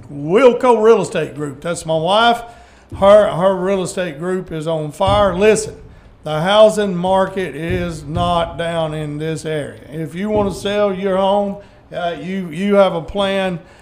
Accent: American